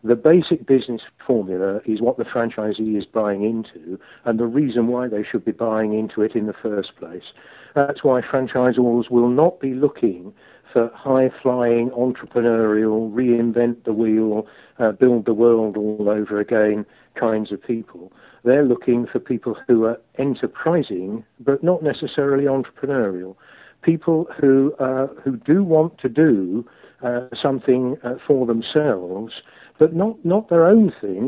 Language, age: English, 50-69